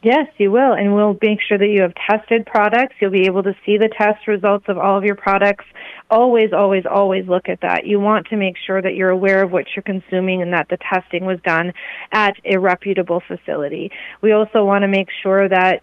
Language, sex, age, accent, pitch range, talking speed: English, female, 30-49, American, 180-210 Hz, 230 wpm